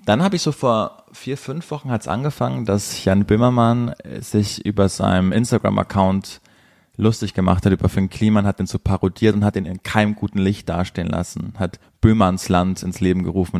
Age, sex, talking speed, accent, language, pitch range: 30-49, male, 190 wpm, German, German, 95-120 Hz